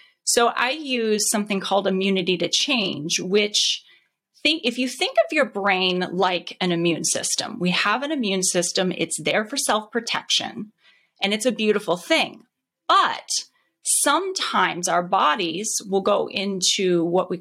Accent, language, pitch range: American, English, 185-235 Hz